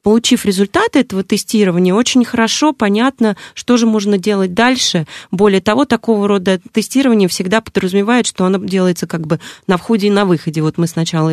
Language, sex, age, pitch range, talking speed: Russian, female, 30-49, 180-225 Hz, 170 wpm